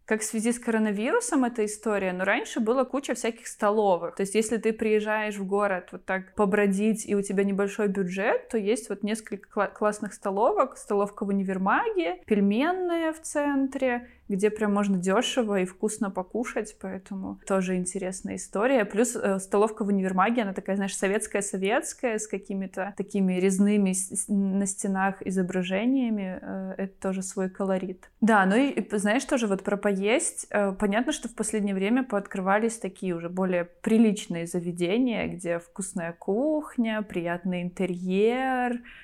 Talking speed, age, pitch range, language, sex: 145 wpm, 20-39, 190-225 Hz, Russian, female